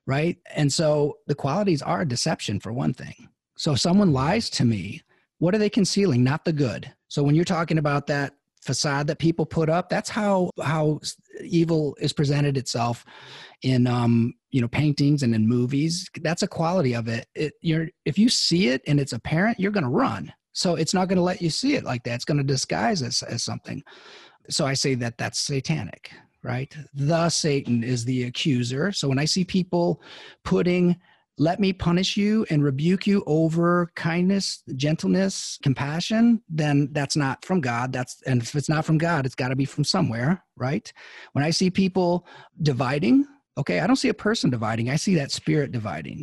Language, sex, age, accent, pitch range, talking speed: English, male, 30-49, American, 130-175 Hz, 195 wpm